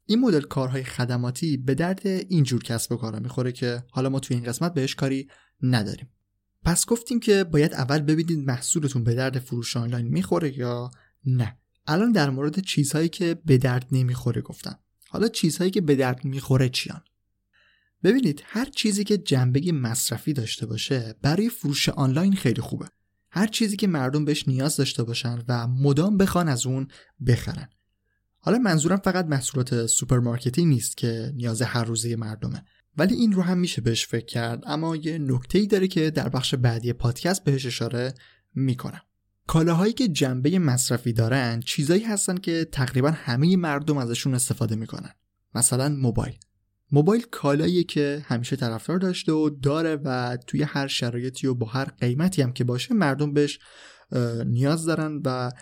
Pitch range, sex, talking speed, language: 120-160 Hz, male, 160 wpm, Persian